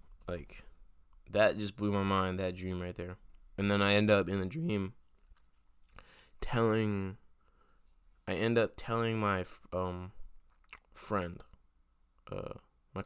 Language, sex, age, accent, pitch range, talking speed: English, male, 20-39, American, 90-100 Hz, 130 wpm